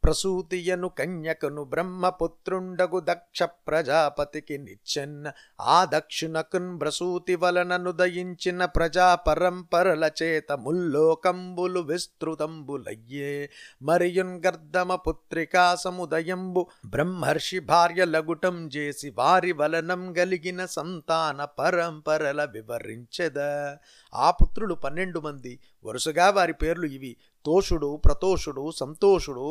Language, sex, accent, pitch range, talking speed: Telugu, male, native, 145-180 Hz, 55 wpm